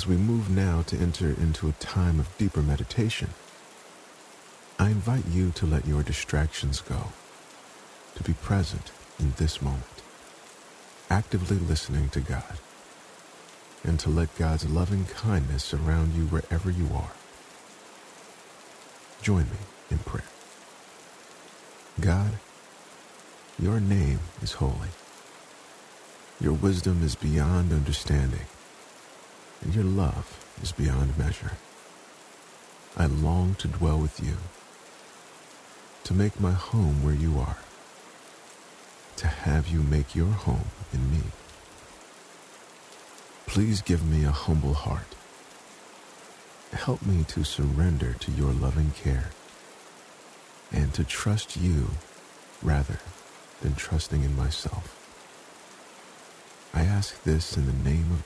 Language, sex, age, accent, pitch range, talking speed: English, male, 50-69, American, 75-95 Hz, 115 wpm